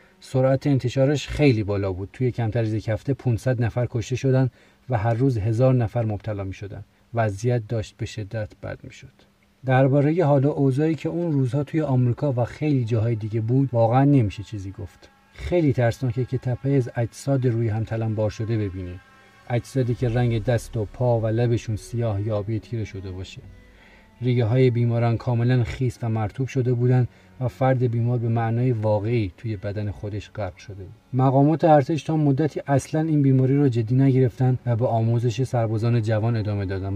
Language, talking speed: Persian, 170 wpm